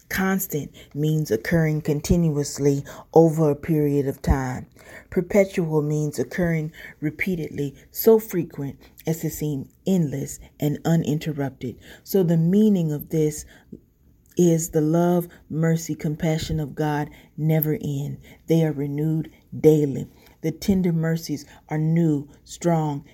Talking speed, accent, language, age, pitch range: 115 wpm, American, English, 30-49, 145-170 Hz